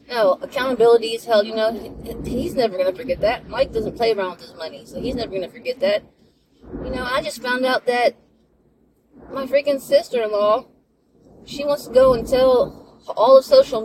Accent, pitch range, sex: American, 190-270 Hz, female